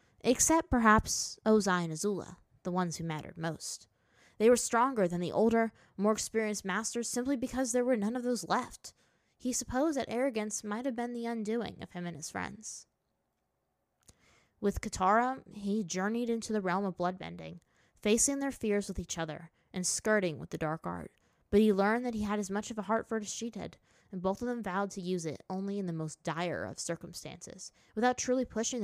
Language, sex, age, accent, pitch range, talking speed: English, female, 20-39, American, 180-235 Hz, 200 wpm